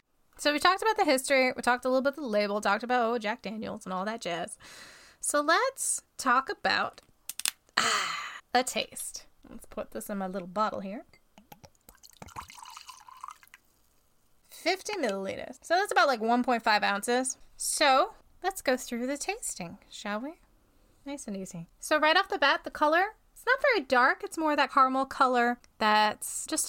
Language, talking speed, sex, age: English, 170 wpm, female, 10-29